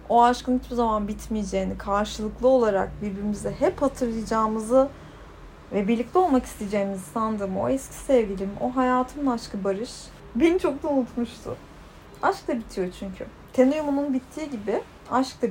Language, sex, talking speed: Turkish, female, 135 wpm